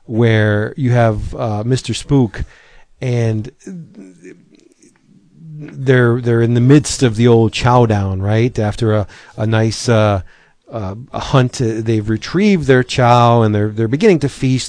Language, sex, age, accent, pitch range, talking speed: English, male, 40-59, American, 110-135 Hz, 150 wpm